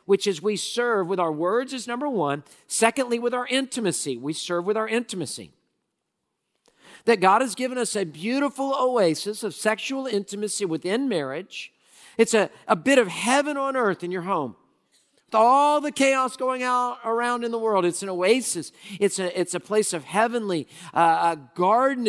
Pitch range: 175-240 Hz